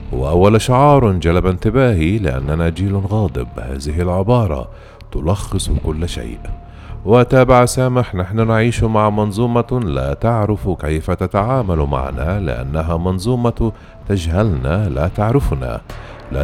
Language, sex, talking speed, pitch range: Arabic, male, 105 wpm, 75-110 Hz